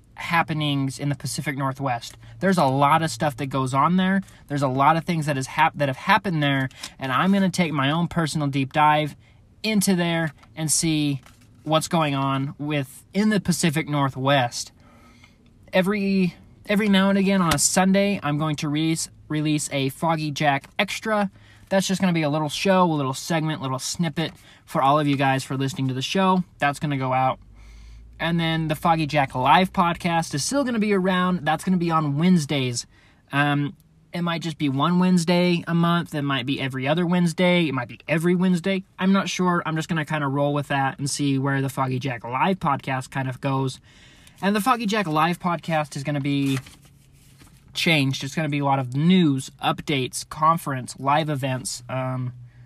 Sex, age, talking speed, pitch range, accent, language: male, 20-39, 200 wpm, 135-170 Hz, American, English